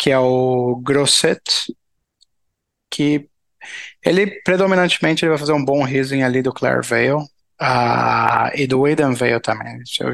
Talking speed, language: 140 wpm, Portuguese